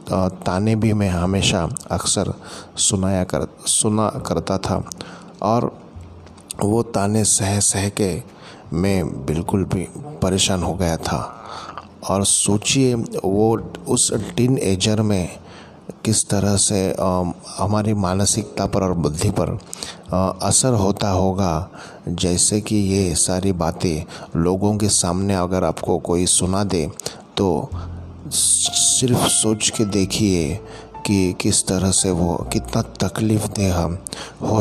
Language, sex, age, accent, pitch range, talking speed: Hindi, male, 20-39, native, 90-105 Hz, 120 wpm